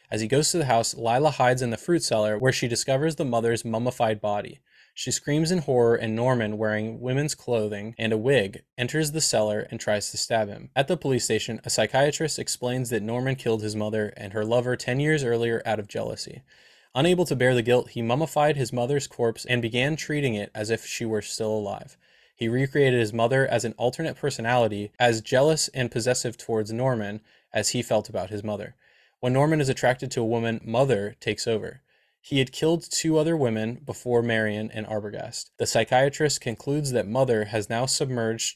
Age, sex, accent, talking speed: 20-39, male, American, 200 wpm